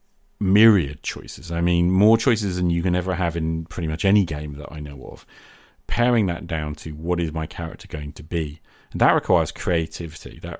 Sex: male